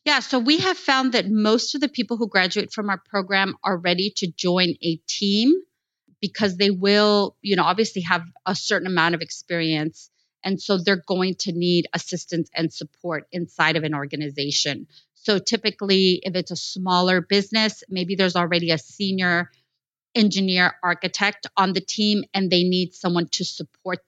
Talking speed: 170 wpm